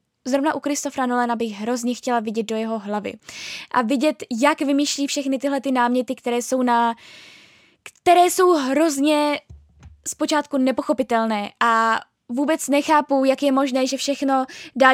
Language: Czech